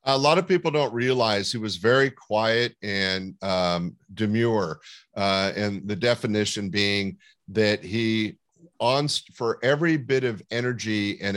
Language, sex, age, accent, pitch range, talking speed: English, male, 50-69, American, 100-115 Hz, 145 wpm